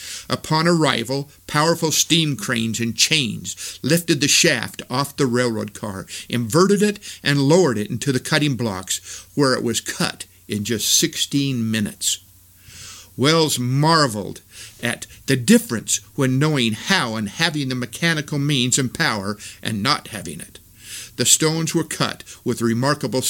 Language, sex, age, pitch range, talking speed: English, male, 50-69, 110-155 Hz, 145 wpm